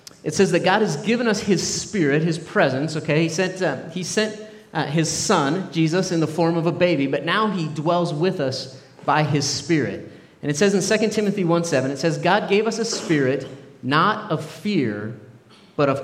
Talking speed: 205 wpm